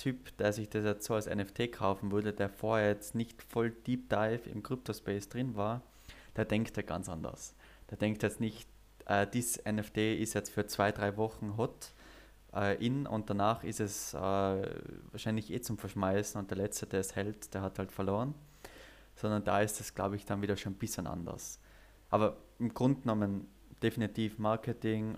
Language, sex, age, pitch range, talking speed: Danish, male, 20-39, 100-115 Hz, 190 wpm